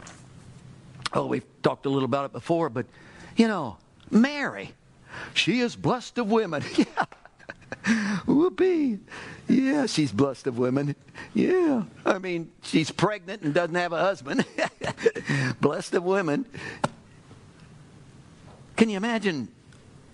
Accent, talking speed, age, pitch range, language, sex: American, 115 wpm, 60-79, 165-240 Hz, English, male